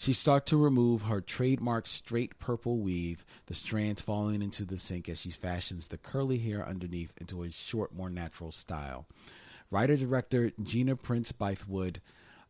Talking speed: 150 wpm